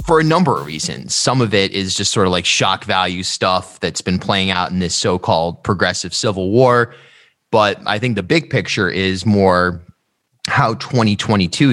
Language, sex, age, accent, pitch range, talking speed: English, male, 30-49, American, 95-130 Hz, 185 wpm